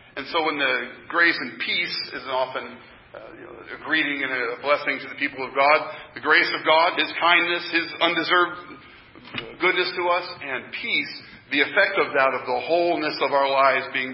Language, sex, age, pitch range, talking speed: English, male, 40-59, 130-165 Hz, 185 wpm